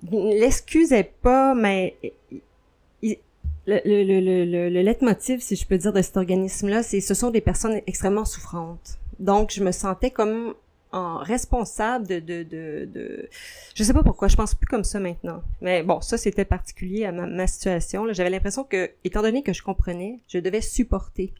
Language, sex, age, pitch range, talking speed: French, female, 30-49, 170-205 Hz, 190 wpm